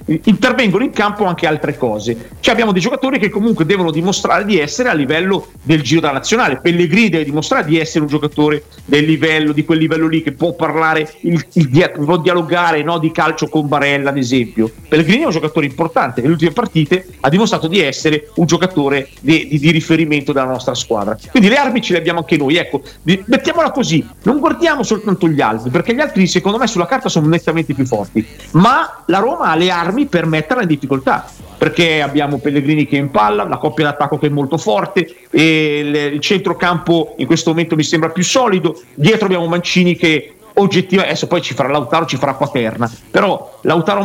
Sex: male